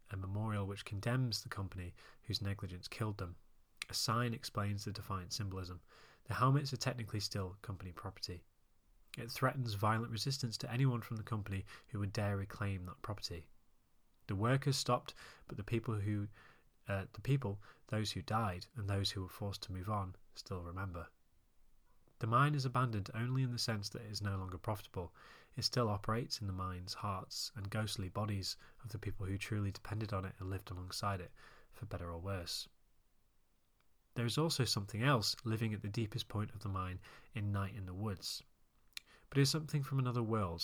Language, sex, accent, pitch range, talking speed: English, male, British, 95-120 Hz, 185 wpm